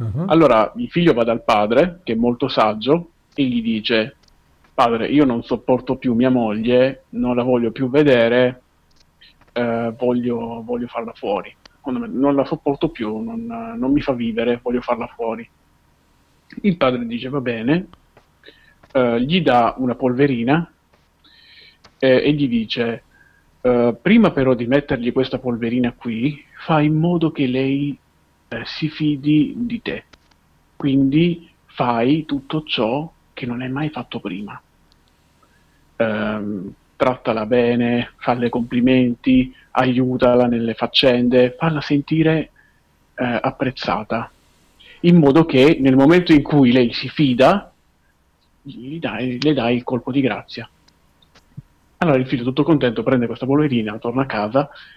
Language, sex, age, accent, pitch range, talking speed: Italian, male, 40-59, native, 115-145 Hz, 140 wpm